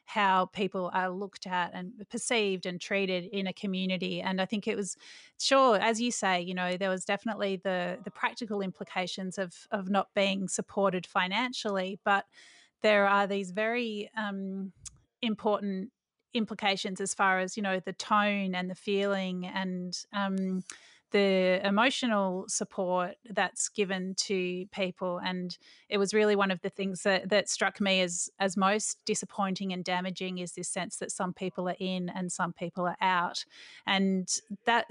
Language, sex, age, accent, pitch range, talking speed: English, female, 30-49, Australian, 185-210 Hz, 165 wpm